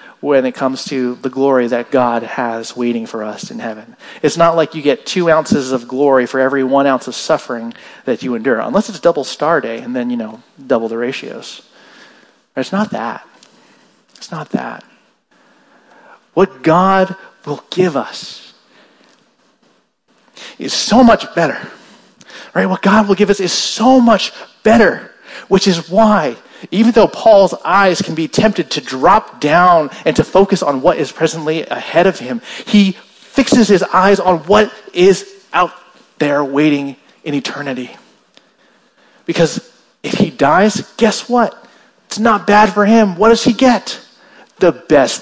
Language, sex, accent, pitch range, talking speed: English, male, American, 140-220 Hz, 160 wpm